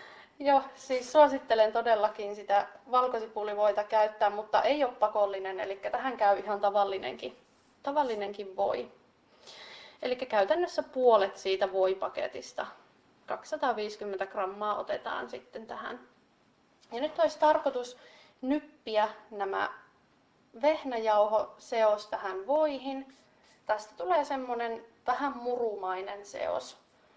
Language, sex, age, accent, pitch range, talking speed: Finnish, female, 30-49, native, 210-260 Hz, 95 wpm